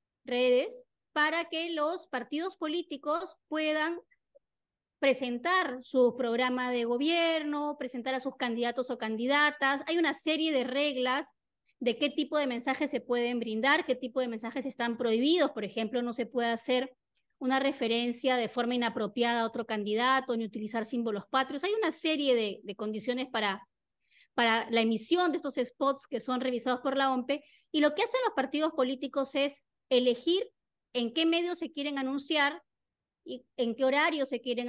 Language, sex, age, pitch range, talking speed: Spanish, female, 30-49, 245-305 Hz, 165 wpm